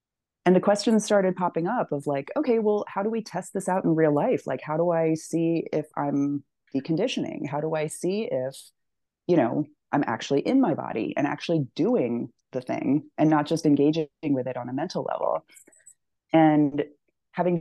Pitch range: 145-200 Hz